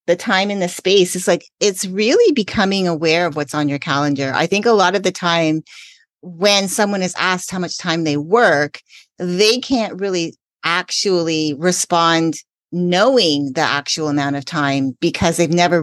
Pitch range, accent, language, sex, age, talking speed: 150-185 Hz, American, English, female, 30-49, 175 wpm